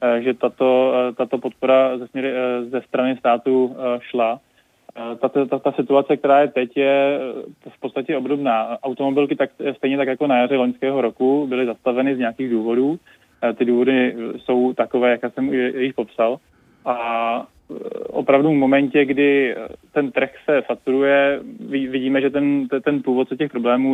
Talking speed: 155 wpm